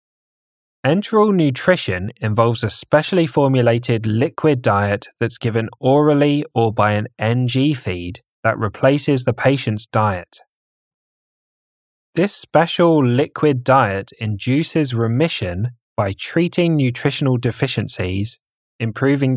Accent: British